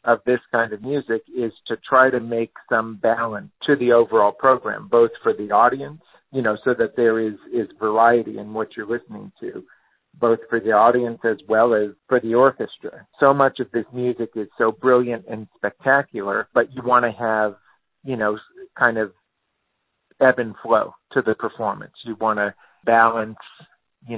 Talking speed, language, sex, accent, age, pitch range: 180 wpm, English, male, American, 50-69, 110-125 Hz